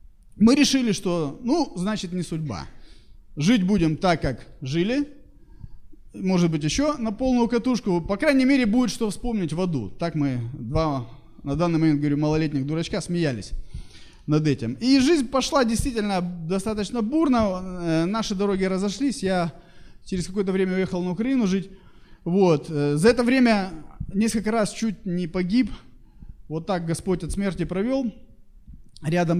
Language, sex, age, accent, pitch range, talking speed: Russian, male, 20-39, native, 150-215 Hz, 145 wpm